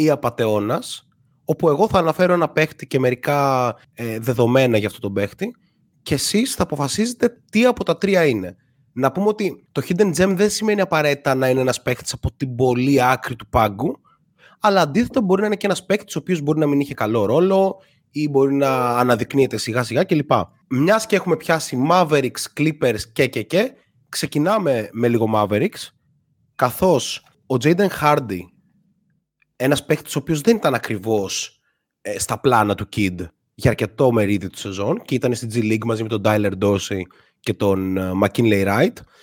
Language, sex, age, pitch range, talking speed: Greek, male, 30-49, 115-190 Hz, 175 wpm